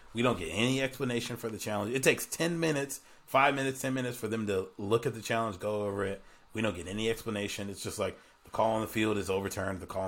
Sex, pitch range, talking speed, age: male, 100-125 Hz, 255 wpm, 30-49